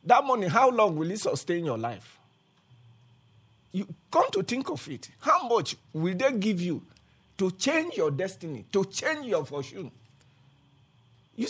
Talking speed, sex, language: 155 wpm, male, English